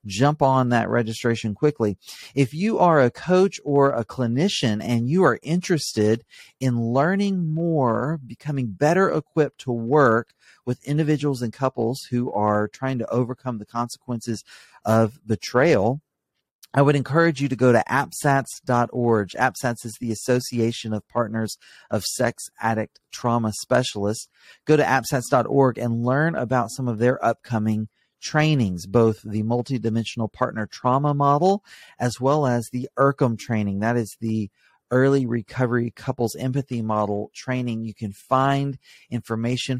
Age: 40-59